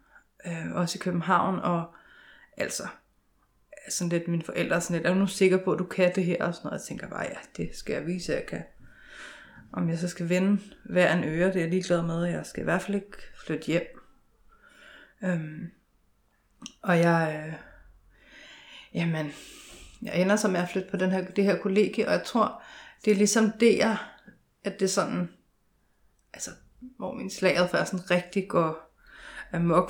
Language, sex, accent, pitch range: Danish, female, native, 170-195 Hz